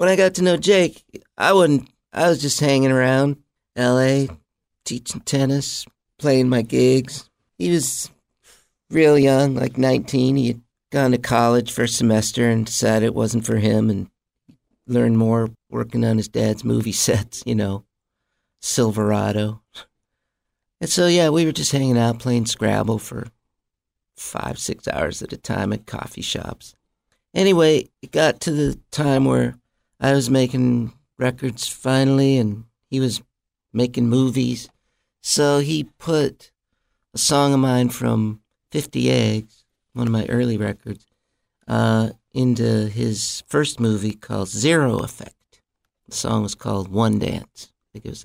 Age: 50-69